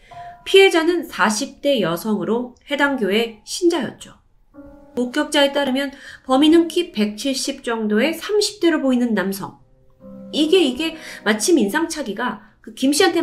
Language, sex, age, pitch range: Korean, female, 30-49, 205-305 Hz